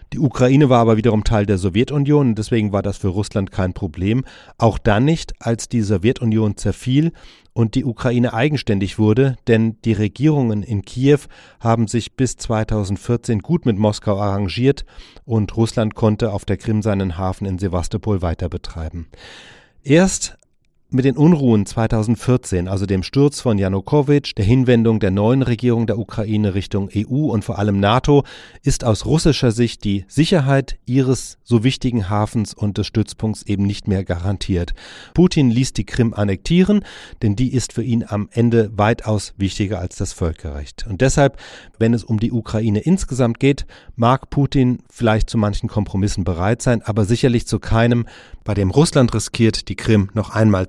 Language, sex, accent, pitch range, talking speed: German, male, German, 100-125 Hz, 165 wpm